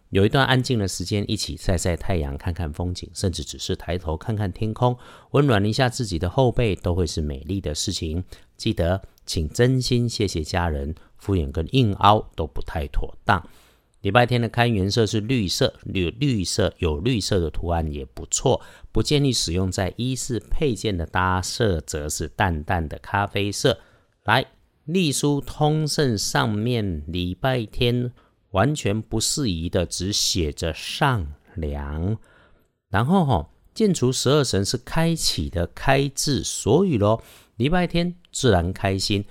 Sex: male